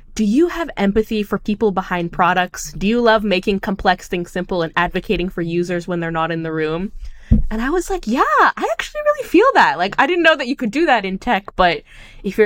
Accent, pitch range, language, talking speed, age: American, 165-210 Hz, English, 230 wpm, 10-29